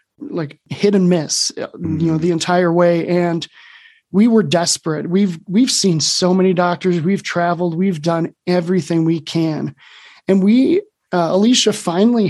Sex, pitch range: male, 165-195 Hz